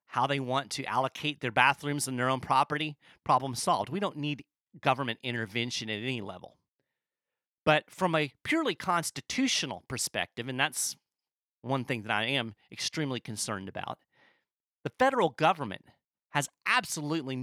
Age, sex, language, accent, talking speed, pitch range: 40-59, male, English, American, 145 wpm, 120-160 Hz